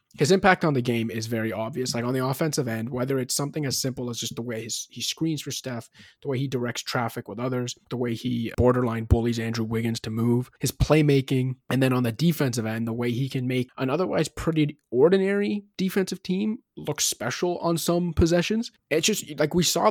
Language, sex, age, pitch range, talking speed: English, male, 20-39, 120-155 Hz, 215 wpm